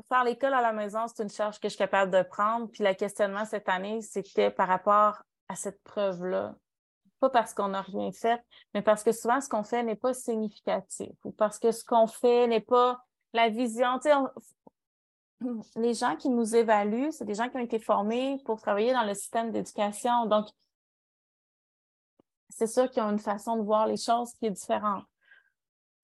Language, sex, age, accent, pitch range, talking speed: French, female, 30-49, Canadian, 205-240 Hz, 195 wpm